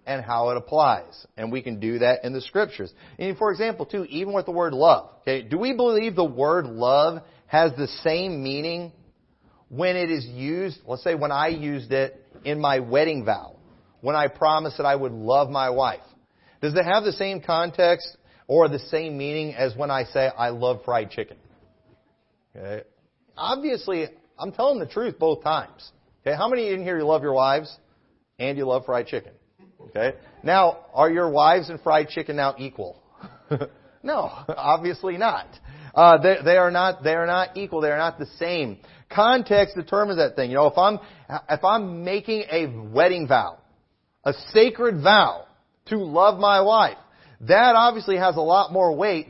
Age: 40-59